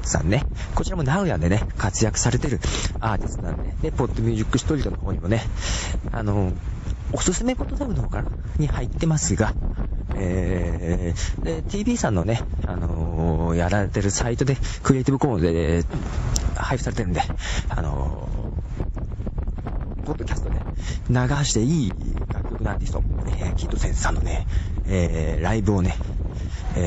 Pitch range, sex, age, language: 80-115 Hz, male, 40-59, Japanese